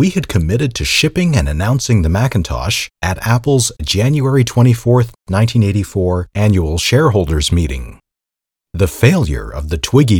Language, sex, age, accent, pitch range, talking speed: English, male, 40-59, American, 85-130 Hz, 130 wpm